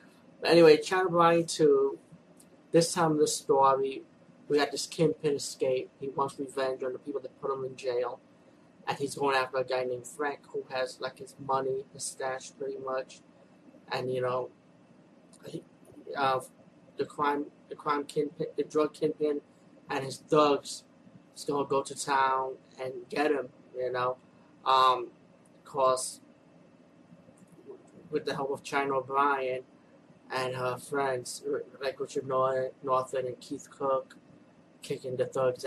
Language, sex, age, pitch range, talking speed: English, male, 20-39, 130-150 Hz, 150 wpm